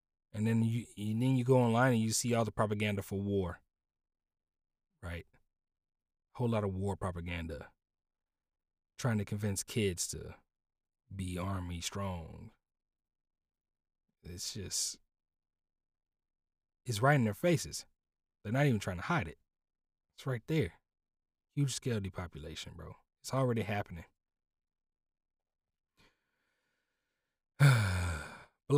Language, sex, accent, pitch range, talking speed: English, male, American, 90-120 Hz, 115 wpm